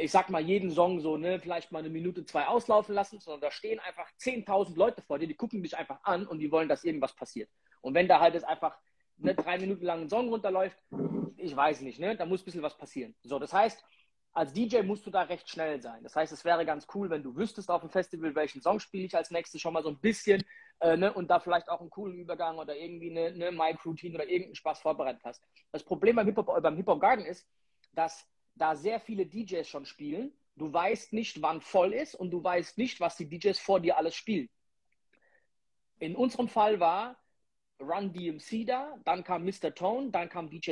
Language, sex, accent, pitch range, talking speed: German, male, German, 165-210 Hz, 225 wpm